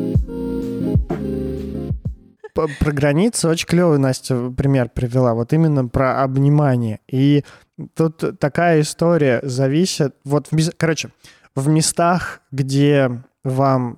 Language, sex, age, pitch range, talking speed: Russian, male, 20-39, 125-160 Hz, 95 wpm